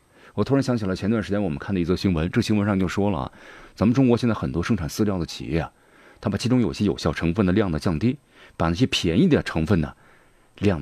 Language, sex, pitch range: Chinese, male, 80-115 Hz